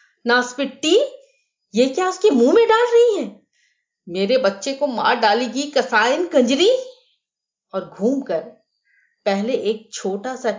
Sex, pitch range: female, 185-260 Hz